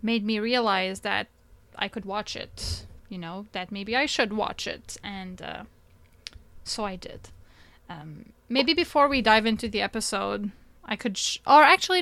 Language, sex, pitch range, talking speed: English, female, 195-255 Hz, 170 wpm